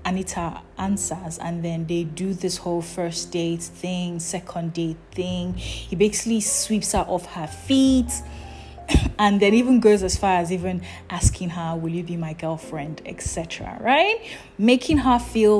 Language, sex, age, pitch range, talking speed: English, female, 20-39, 170-240 Hz, 160 wpm